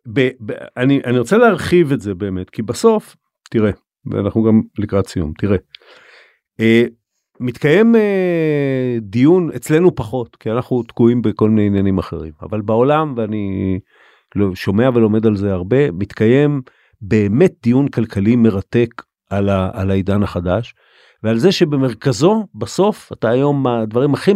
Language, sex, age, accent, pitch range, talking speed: Hebrew, male, 50-69, native, 110-140 Hz, 140 wpm